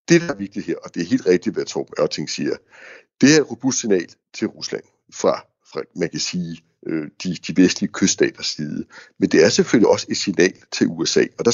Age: 60-79